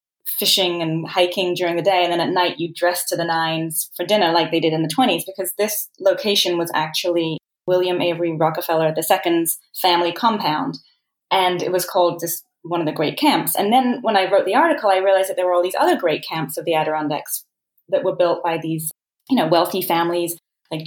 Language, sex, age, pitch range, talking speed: English, female, 20-39, 165-205 Hz, 215 wpm